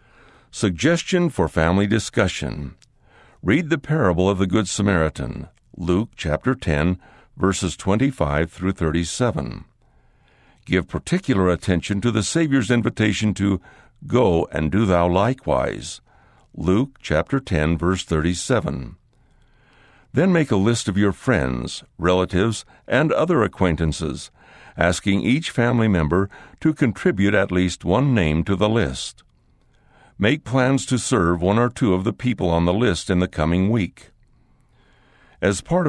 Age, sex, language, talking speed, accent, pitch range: 60-79, male, English, 130 wpm, American, 90-125 Hz